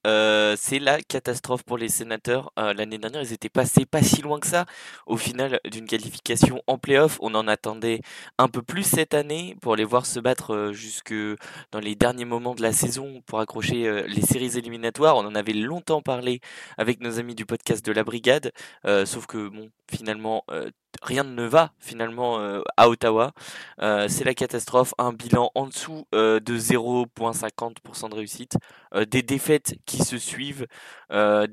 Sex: male